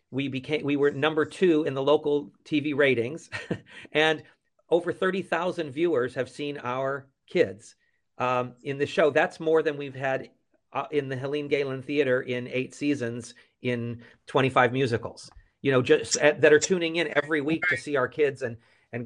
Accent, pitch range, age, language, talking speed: American, 130-155 Hz, 50-69, English, 185 wpm